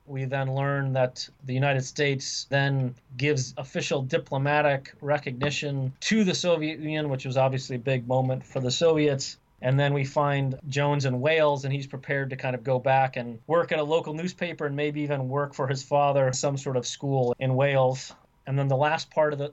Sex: male